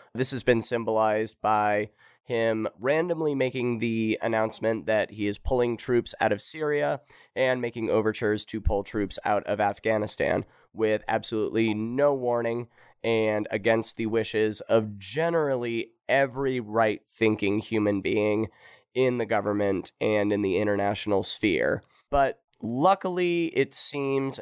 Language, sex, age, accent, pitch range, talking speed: English, male, 20-39, American, 105-130 Hz, 135 wpm